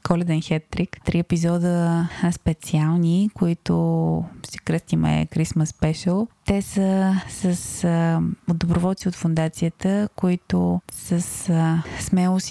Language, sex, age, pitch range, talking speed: Bulgarian, female, 20-39, 160-180 Hz, 105 wpm